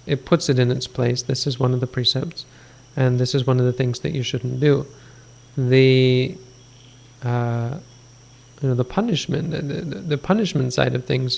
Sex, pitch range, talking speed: male, 125-140 Hz, 185 wpm